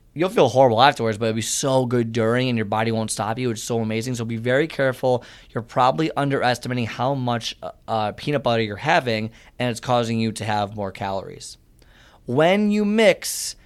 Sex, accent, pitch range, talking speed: male, American, 115-140 Hz, 195 wpm